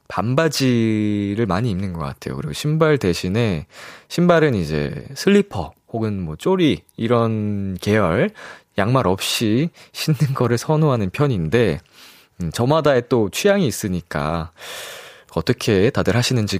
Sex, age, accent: male, 20-39, native